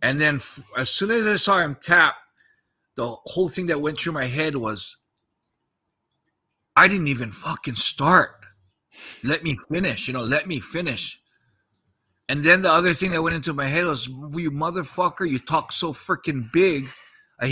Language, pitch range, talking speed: English, 130-170 Hz, 175 wpm